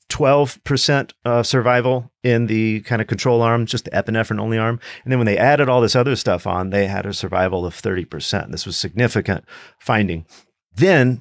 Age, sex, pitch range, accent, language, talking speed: 40-59, male, 95-120 Hz, American, English, 170 wpm